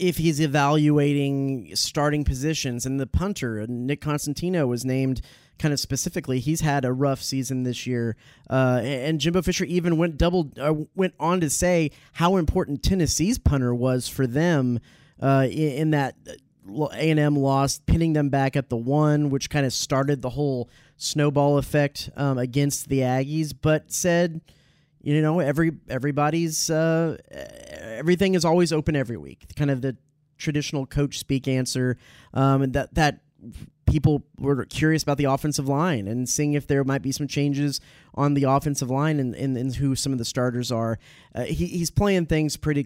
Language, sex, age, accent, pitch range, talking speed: English, male, 30-49, American, 130-155 Hz, 170 wpm